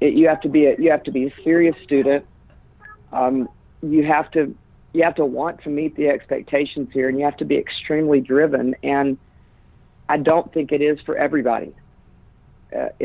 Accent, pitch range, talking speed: American, 130-150 Hz, 195 wpm